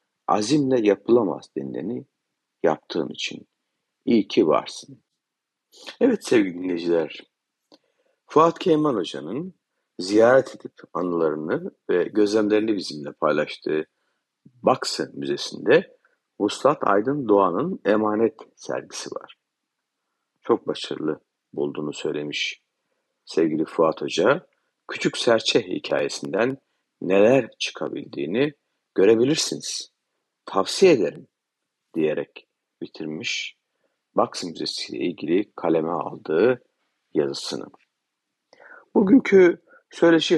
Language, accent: Turkish, native